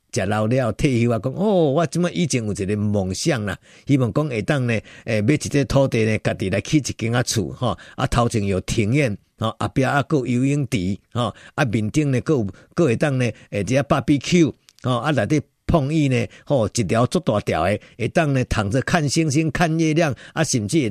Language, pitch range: Chinese, 115-155 Hz